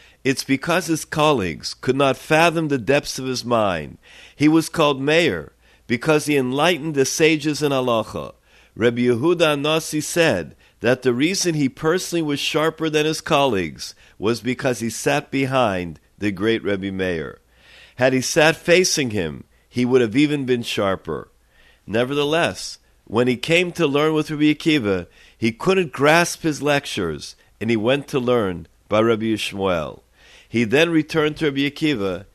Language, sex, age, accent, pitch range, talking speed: English, male, 50-69, American, 115-150 Hz, 160 wpm